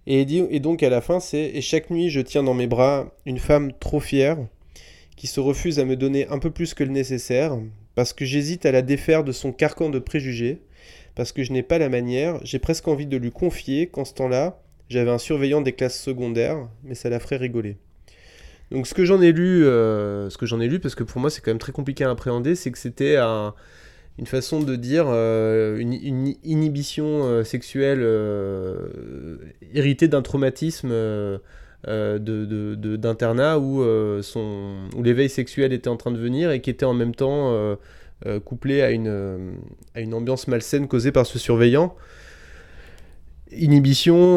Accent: French